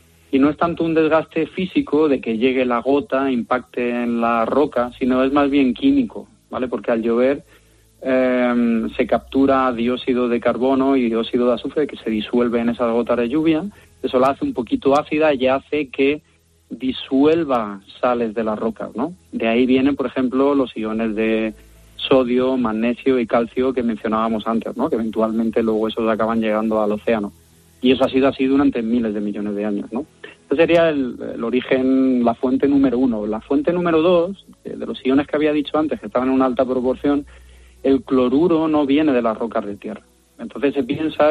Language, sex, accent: Spanish, male, Spanish